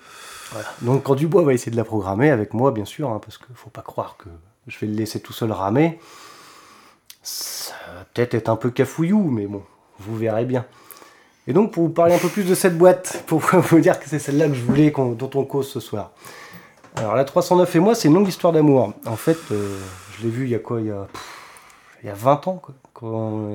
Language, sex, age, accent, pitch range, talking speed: French, male, 30-49, French, 110-135 Hz, 230 wpm